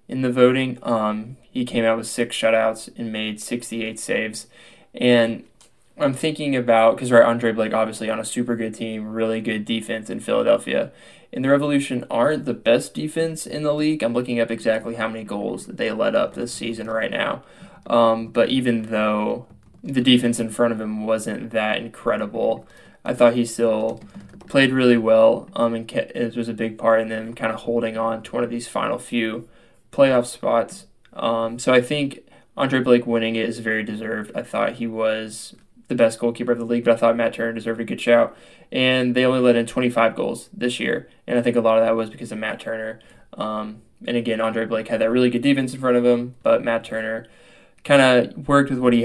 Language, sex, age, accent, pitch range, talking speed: English, male, 10-29, American, 110-125 Hz, 210 wpm